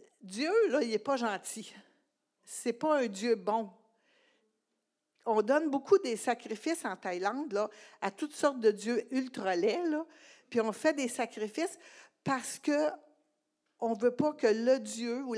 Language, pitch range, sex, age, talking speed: French, 210-285 Hz, female, 60-79, 155 wpm